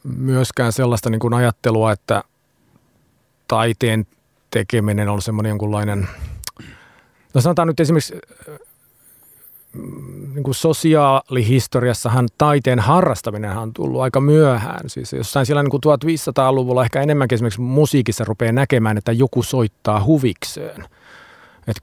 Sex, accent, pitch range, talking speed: male, native, 110-130 Hz, 105 wpm